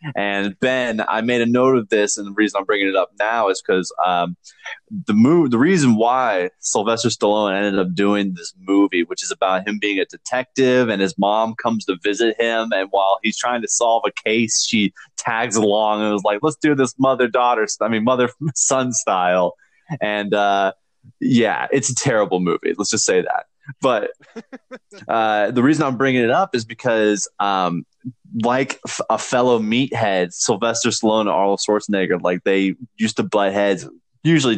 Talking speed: 180 wpm